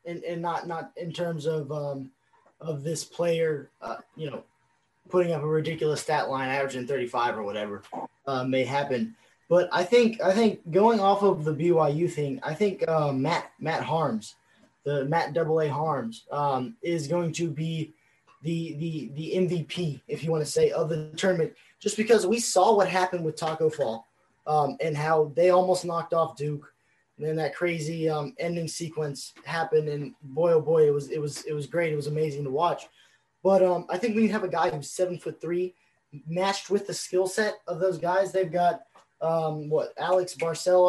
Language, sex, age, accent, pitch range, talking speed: English, male, 20-39, American, 150-180 Hz, 195 wpm